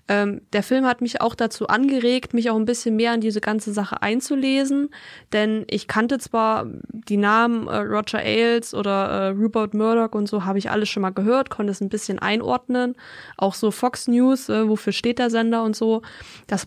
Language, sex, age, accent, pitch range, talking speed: German, female, 20-39, German, 210-245 Hz, 200 wpm